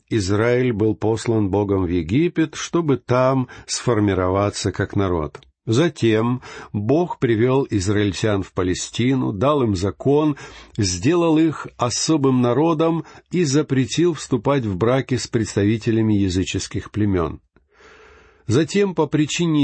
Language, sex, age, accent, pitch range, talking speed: Russian, male, 50-69, native, 100-140 Hz, 110 wpm